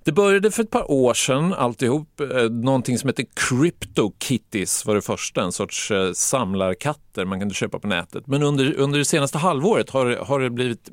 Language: Swedish